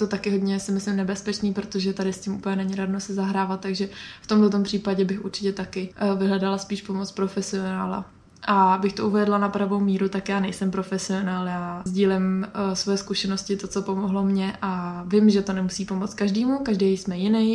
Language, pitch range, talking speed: Czech, 190-210 Hz, 190 wpm